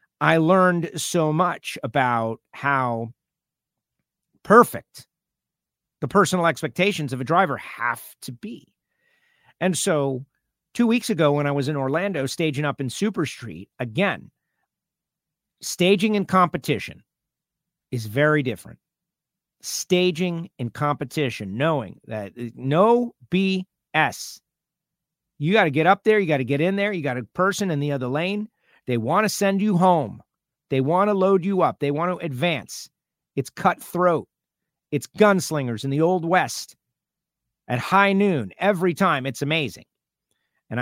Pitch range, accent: 140-185 Hz, American